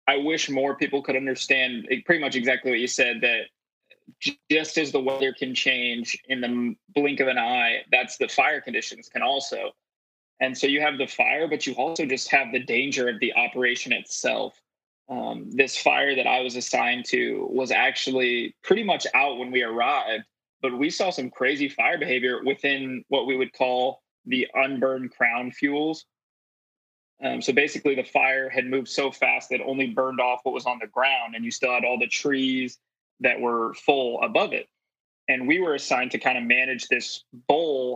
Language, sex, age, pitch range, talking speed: English, male, 20-39, 125-145 Hz, 190 wpm